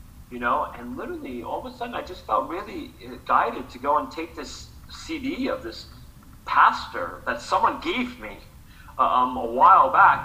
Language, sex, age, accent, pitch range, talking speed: English, male, 40-59, American, 115-145 Hz, 175 wpm